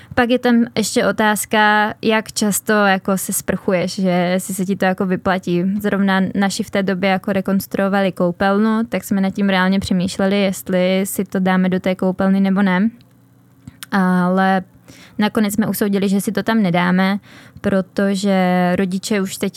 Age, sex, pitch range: 20-39, female, 185-205 Hz